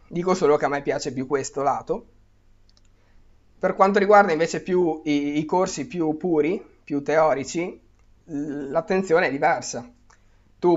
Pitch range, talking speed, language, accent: 130-160 Hz, 140 wpm, Italian, native